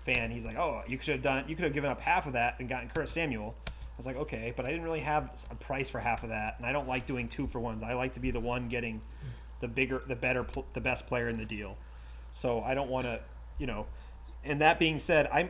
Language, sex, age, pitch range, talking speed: English, male, 30-49, 115-145 Hz, 280 wpm